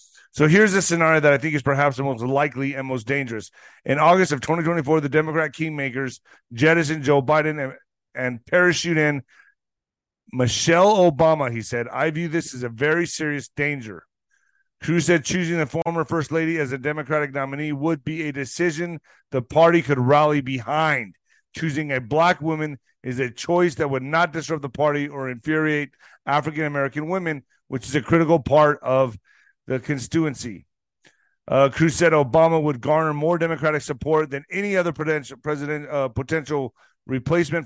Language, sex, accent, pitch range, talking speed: English, male, American, 135-165 Hz, 165 wpm